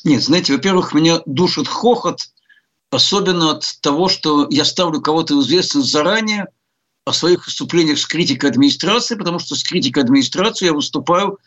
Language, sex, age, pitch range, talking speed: Russian, male, 60-79, 160-215 Hz, 145 wpm